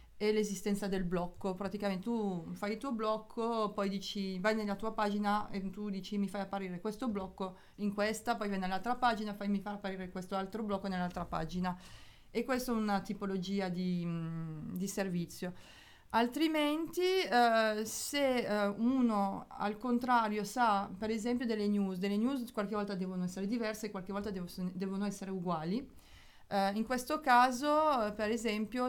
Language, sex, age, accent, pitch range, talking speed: Italian, female, 30-49, native, 190-220 Hz, 165 wpm